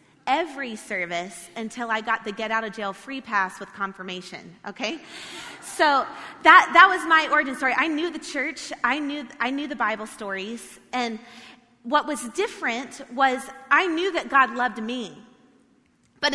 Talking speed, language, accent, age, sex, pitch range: 165 wpm, English, American, 30-49, female, 225-285 Hz